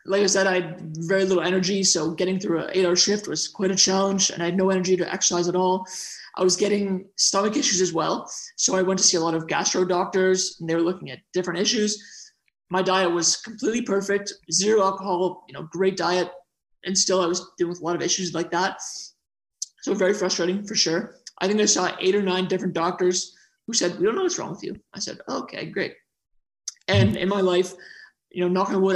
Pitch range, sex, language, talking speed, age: 180-195 Hz, male, English, 230 wpm, 20-39